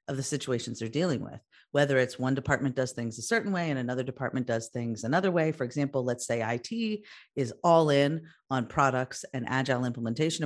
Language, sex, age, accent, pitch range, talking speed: English, female, 40-59, American, 125-165 Hz, 200 wpm